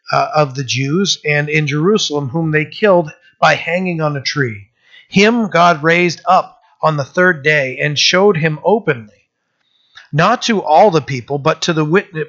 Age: 40-59